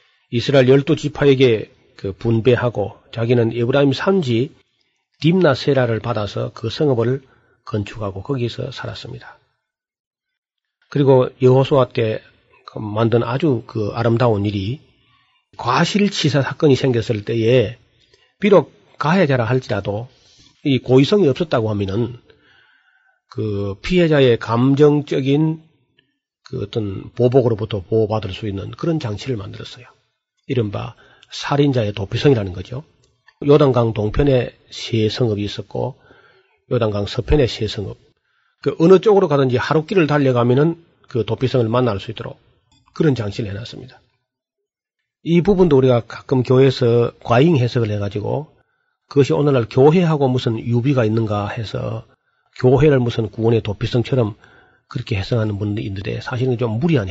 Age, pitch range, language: 40-59, 115-140 Hz, Korean